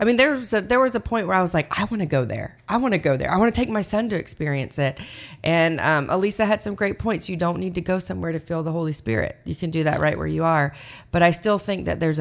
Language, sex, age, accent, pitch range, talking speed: English, female, 30-49, American, 140-175 Hz, 315 wpm